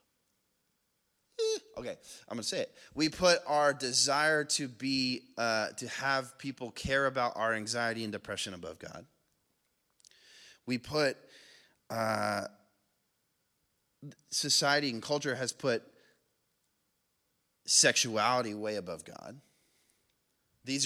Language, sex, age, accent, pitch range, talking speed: English, male, 30-49, American, 120-165 Hz, 105 wpm